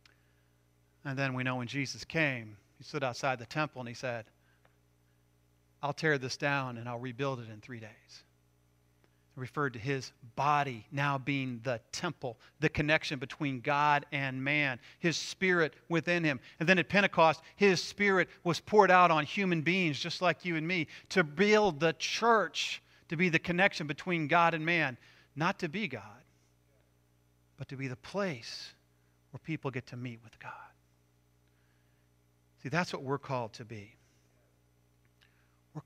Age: 40-59